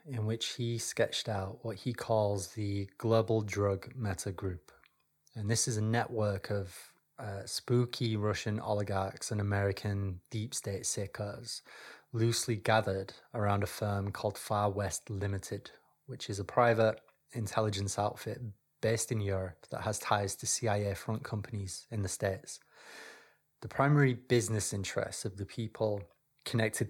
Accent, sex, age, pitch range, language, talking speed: British, male, 20-39, 100-115 Hz, English, 145 wpm